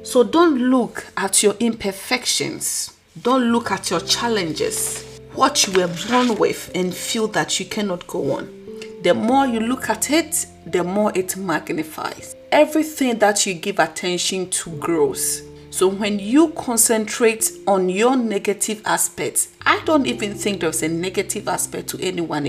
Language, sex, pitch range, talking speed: English, female, 175-225 Hz, 155 wpm